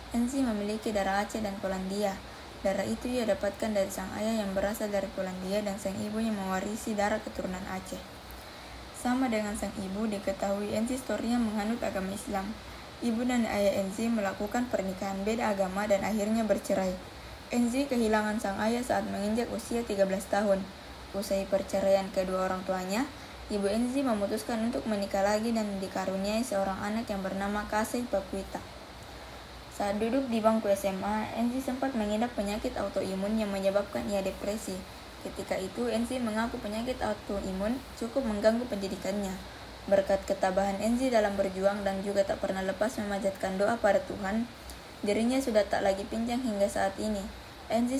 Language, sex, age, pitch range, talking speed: Indonesian, female, 20-39, 195-225 Hz, 150 wpm